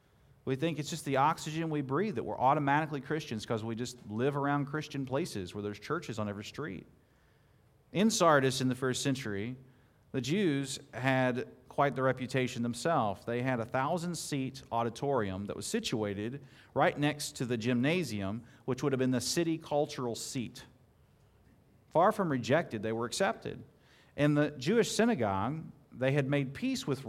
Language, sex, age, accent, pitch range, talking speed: English, male, 40-59, American, 120-155 Hz, 165 wpm